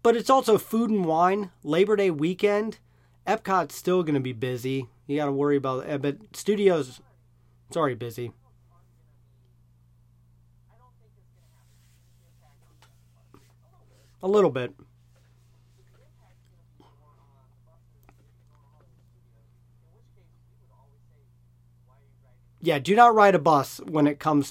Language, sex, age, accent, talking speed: English, male, 30-49, American, 95 wpm